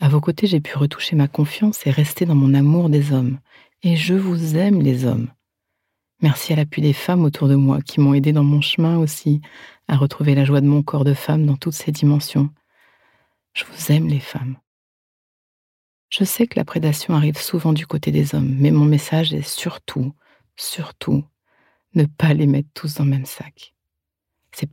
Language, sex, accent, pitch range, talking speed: French, female, French, 140-165 Hz, 195 wpm